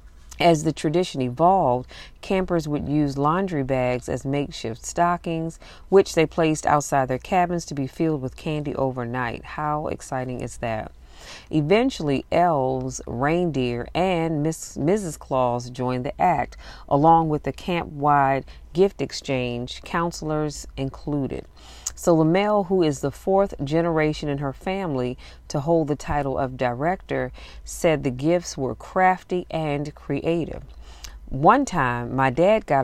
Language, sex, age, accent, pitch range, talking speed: English, female, 40-59, American, 130-170 Hz, 135 wpm